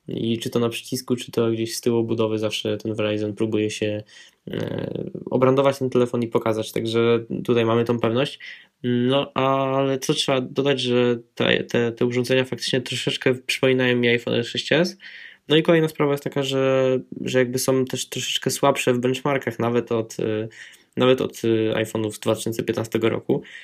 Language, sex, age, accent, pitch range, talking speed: Polish, male, 10-29, native, 110-130 Hz, 160 wpm